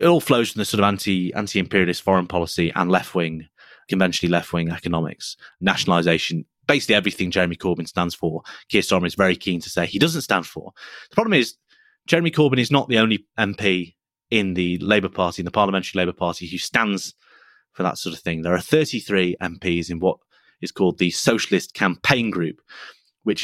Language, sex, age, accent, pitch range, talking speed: English, male, 30-49, British, 90-120 Hz, 185 wpm